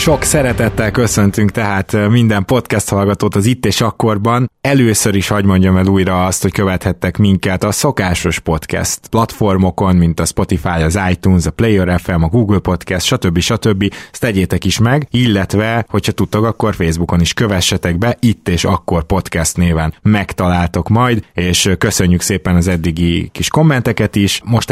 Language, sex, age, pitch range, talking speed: Hungarian, male, 20-39, 90-110 Hz, 160 wpm